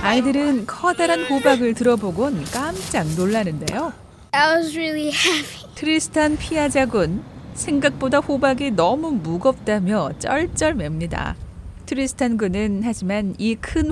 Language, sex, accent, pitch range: Korean, female, native, 190-275 Hz